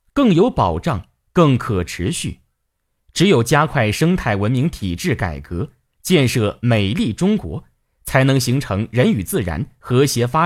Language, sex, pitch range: Chinese, male, 95-150 Hz